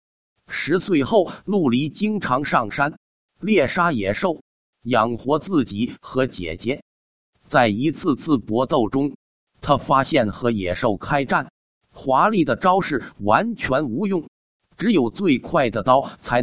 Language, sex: Chinese, male